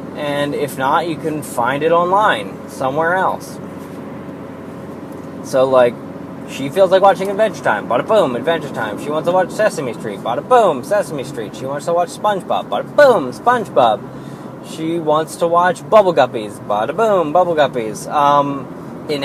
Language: English